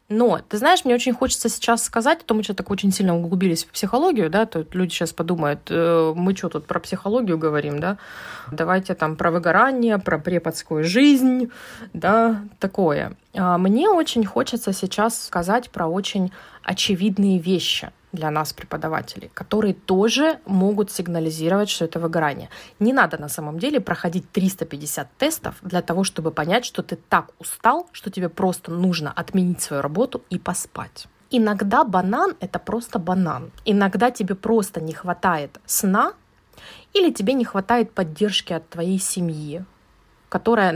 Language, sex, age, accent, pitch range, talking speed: Russian, female, 20-39, native, 175-230 Hz, 150 wpm